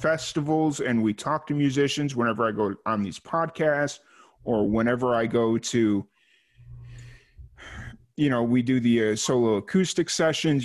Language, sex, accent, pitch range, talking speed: English, male, American, 105-130 Hz, 145 wpm